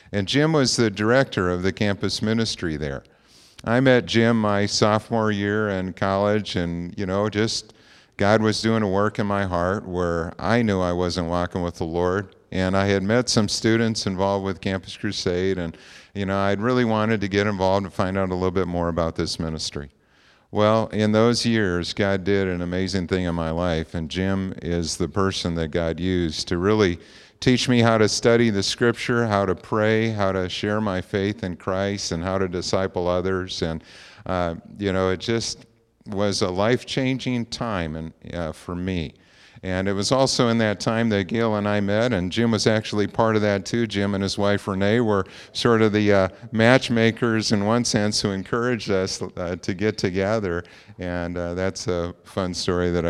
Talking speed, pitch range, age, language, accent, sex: 195 wpm, 90-110 Hz, 50-69, English, American, male